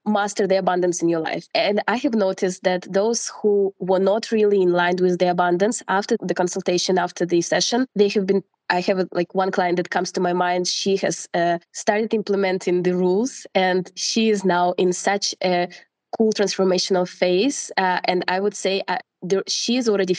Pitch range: 180-210 Hz